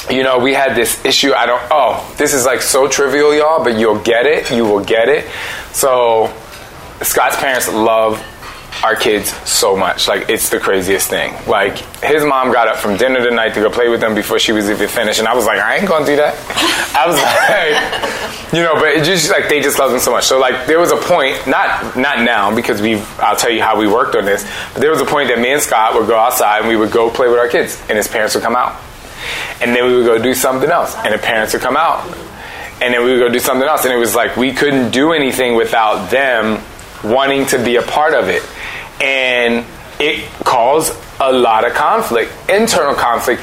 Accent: American